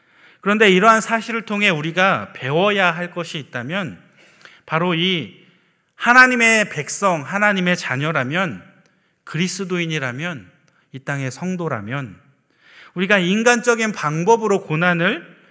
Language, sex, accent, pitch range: Korean, male, native, 145-200 Hz